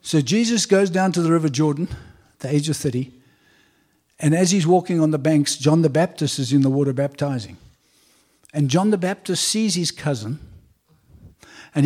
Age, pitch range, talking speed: 60-79, 145-190 Hz, 180 wpm